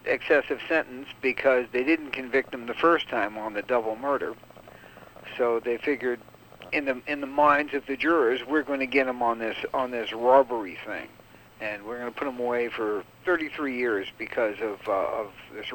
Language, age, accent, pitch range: English, 60-79, American, 120-150 Hz